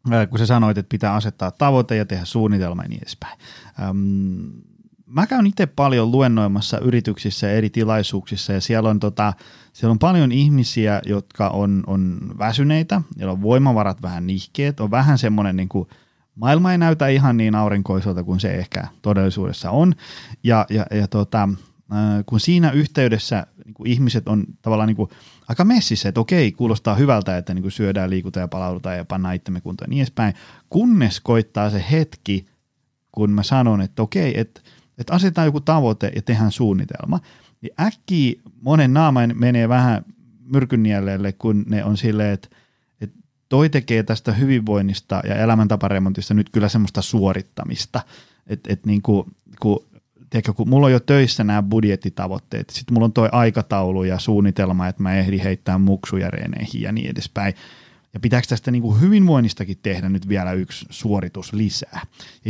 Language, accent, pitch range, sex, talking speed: Finnish, native, 100-125 Hz, male, 145 wpm